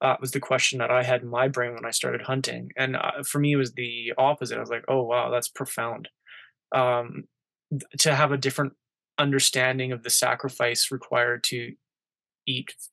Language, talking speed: English, 200 wpm